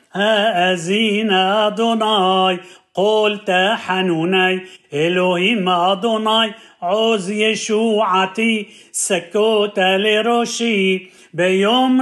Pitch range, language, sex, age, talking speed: 185-225 Hz, Hebrew, male, 40-59, 55 wpm